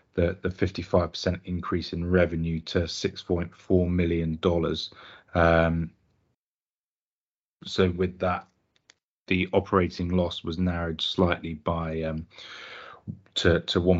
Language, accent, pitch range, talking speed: English, British, 80-90 Hz, 105 wpm